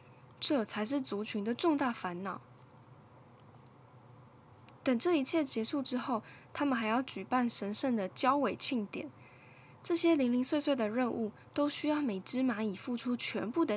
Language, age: Chinese, 10-29